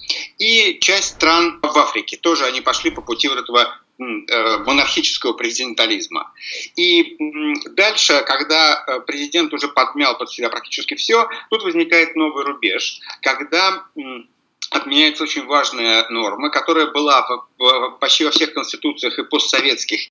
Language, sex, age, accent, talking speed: Russian, male, 50-69, native, 125 wpm